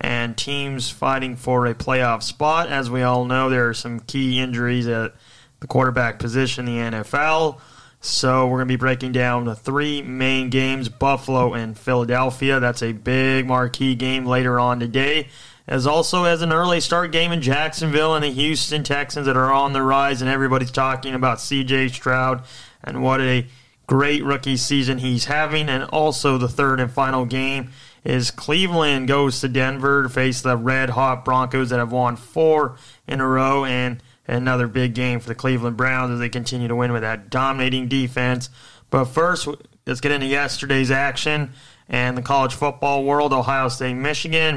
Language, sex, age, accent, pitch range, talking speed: English, male, 20-39, American, 125-140 Hz, 180 wpm